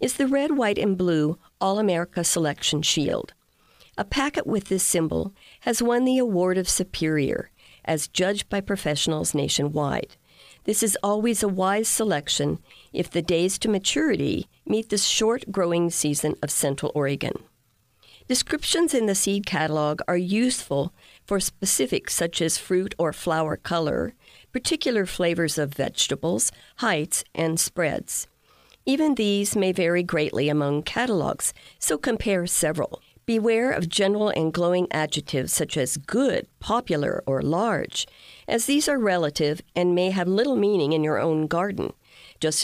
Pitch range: 155-220 Hz